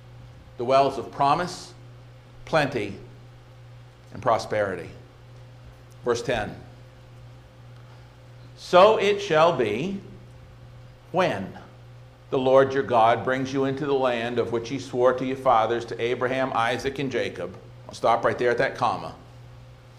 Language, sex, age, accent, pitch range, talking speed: English, male, 50-69, American, 120-130 Hz, 125 wpm